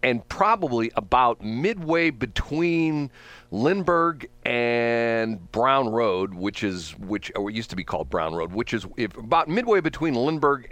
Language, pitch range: English, 95-130 Hz